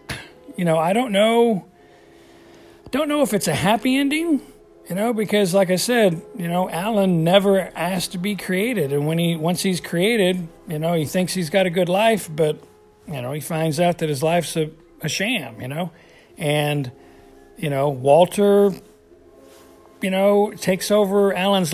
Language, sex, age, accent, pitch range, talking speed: English, male, 50-69, American, 160-205 Hz, 175 wpm